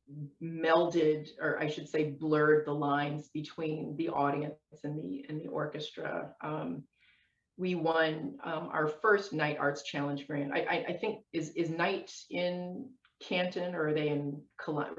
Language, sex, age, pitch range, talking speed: English, female, 30-49, 140-165 Hz, 160 wpm